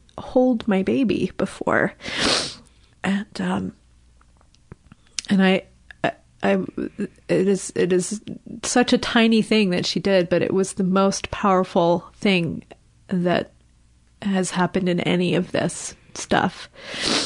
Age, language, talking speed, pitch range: 30-49, English, 125 wpm, 185-210 Hz